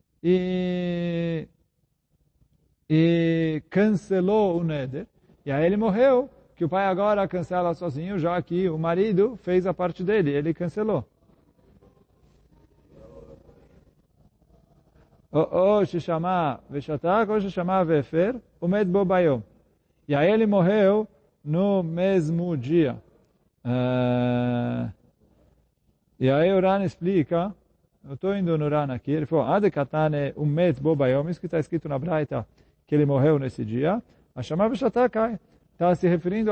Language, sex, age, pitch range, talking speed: Portuguese, male, 40-59, 150-190 Hz, 115 wpm